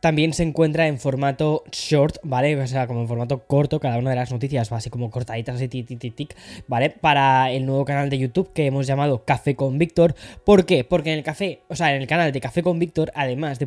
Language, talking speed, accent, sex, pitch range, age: Spanish, 255 wpm, Spanish, female, 130-160 Hz, 10-29